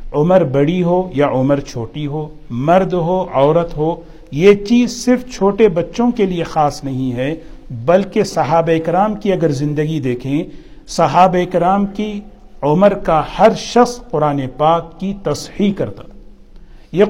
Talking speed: 145 wpm